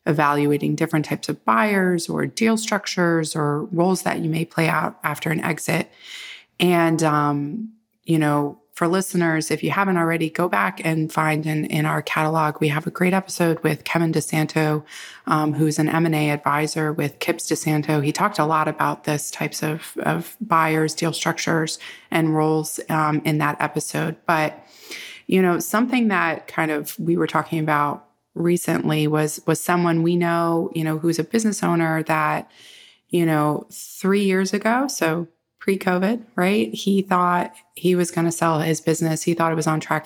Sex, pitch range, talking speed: female, 155-185 Hz, 175 wpm